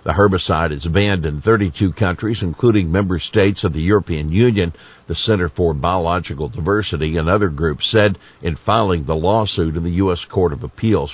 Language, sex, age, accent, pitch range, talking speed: English, male, 60-79, American, 85-110 Hz, 180 wpm